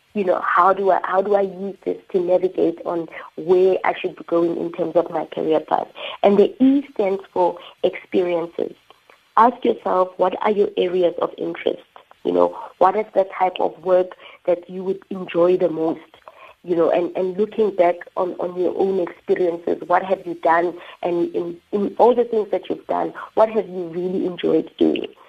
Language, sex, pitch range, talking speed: English, female, 175-200 Hz, 195 wpm